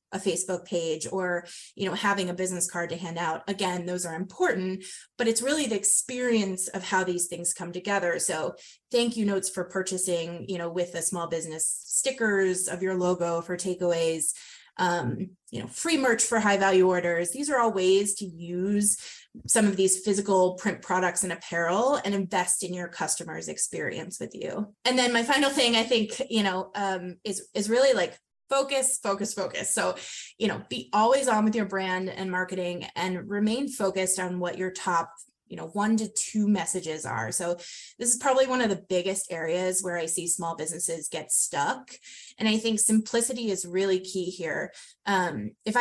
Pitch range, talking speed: 180-220 Hz, 190 wpm